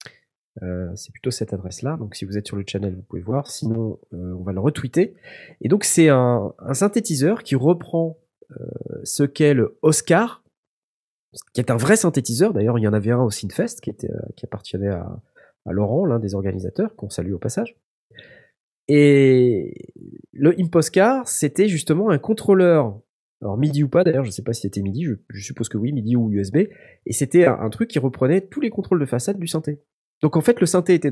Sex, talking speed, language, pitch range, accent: male, 210 wpm, French, 110-155 Hz, French